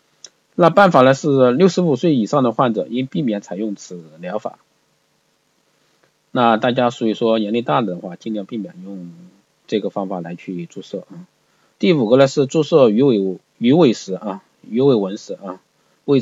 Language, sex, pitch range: Chinese, male, 110-145 Hz